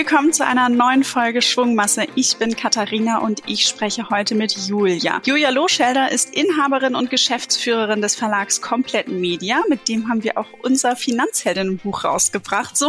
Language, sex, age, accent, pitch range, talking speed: German, female, 20-39, German, 210-260 Hz, 160 wpm